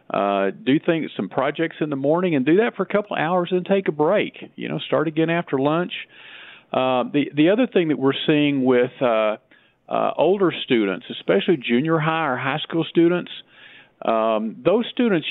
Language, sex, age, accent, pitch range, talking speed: English, male, 50-69, American, 120-155 Hz, 190 wpm